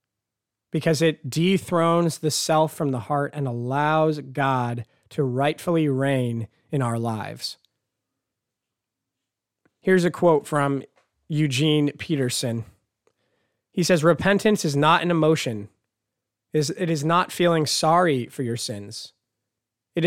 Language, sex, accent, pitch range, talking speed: English, male, American, 120-165 Hz, 115 wpm